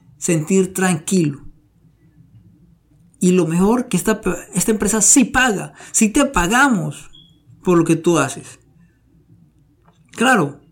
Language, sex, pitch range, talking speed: Spanish, male, 160-230 Hz, 120 wpm